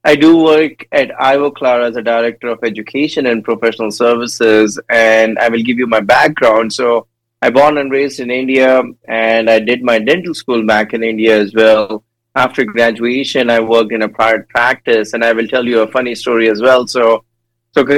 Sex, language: male, English